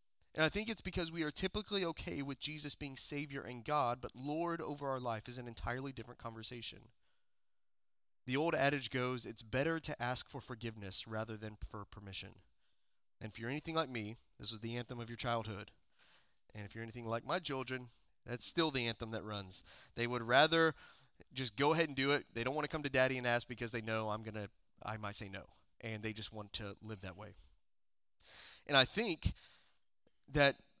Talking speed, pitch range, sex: 205 wpm, 115-145 Hz, male